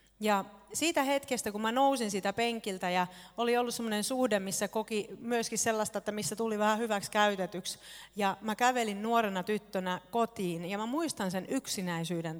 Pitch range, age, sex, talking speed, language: 180-225 Hz, 40-59, female, 165 wpm, Finnish